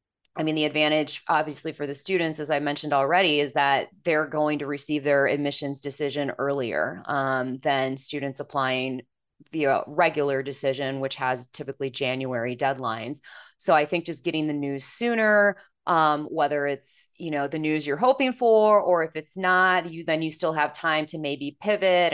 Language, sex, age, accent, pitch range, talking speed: English, female, 20-39, American, 150-200 Hz, 175 wpm